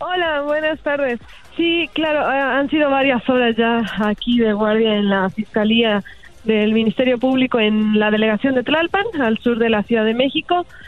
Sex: female